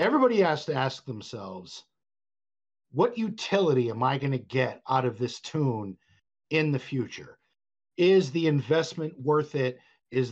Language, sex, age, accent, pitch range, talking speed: English, male, 50-69, American, 125-190 Hz, 145 wpm